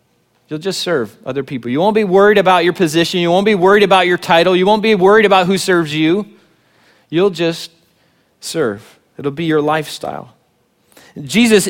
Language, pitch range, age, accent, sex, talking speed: English, 130-170 Hz, 30-49, American, male, 180 wpm